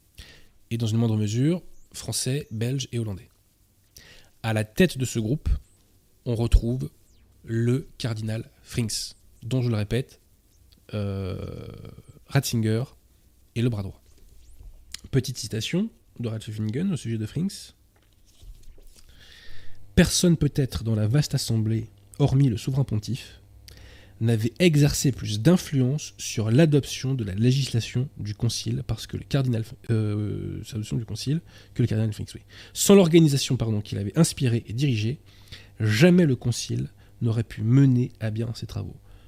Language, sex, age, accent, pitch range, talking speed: French, male, 20-39, French, 100-125 Hz, 135 wpm